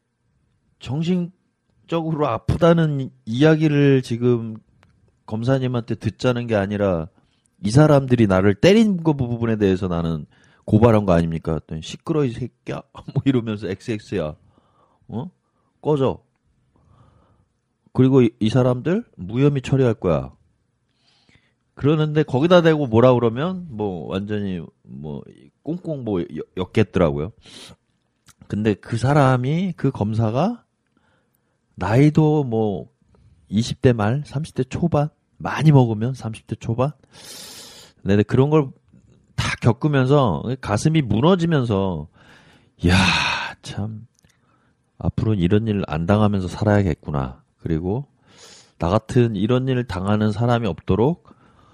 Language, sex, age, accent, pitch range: Korean, male, 30-49, native, 100-135 Hz